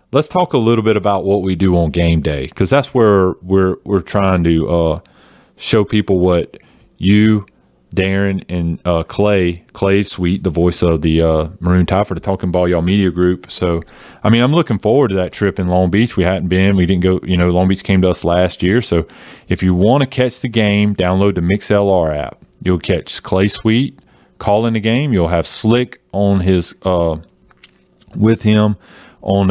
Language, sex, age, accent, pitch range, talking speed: English, male, 30-49, American, 90-110 Hz, 200 wpm